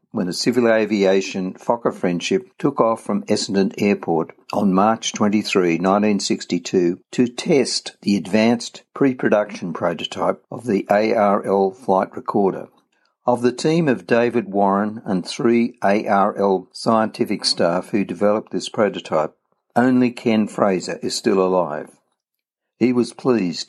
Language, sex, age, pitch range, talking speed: English, male, 60-79, 95-120 Hz, 125 wpm